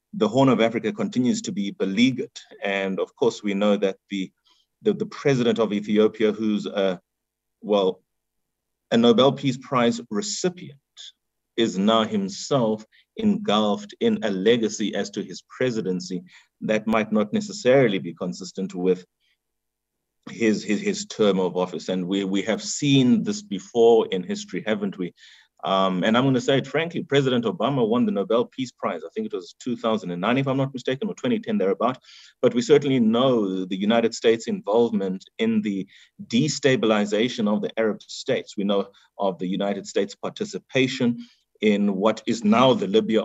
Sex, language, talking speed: male, English, 165 wpm